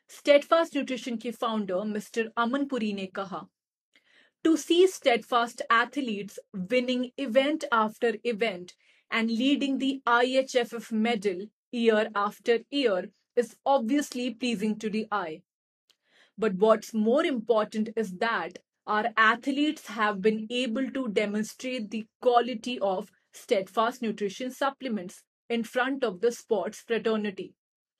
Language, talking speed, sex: Hindi, 95 wpm, female